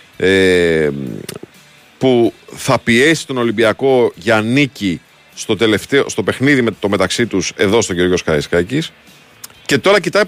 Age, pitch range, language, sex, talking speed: 40-59, 100-145 Hz, Greek, male, 130 wpm